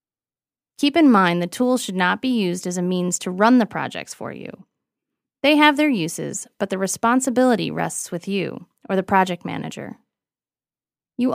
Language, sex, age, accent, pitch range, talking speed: English, female, 20-39, American, 175-255 Hz, 175 wpm